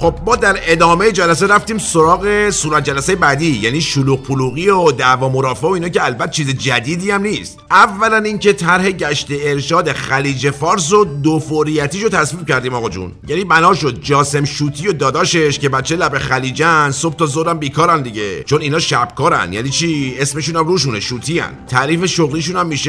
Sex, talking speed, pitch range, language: male, 180 wpm, 140-175 Hz, Persian